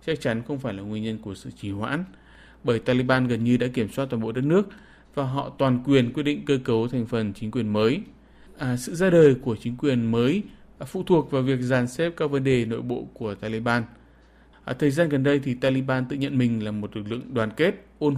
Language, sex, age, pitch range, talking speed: Vietnamese, male, 20-39, 115-145 Hz, 235 wpm